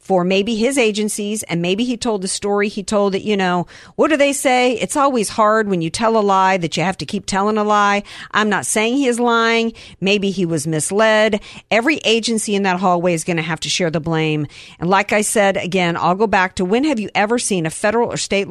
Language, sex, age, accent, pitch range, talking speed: English, female, 50-69, American, 170-220 Hz, 245 wpm